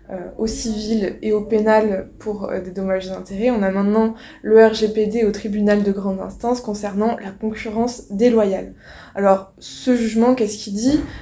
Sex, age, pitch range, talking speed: female, 20-39, 200-230 Hz, 165 wpm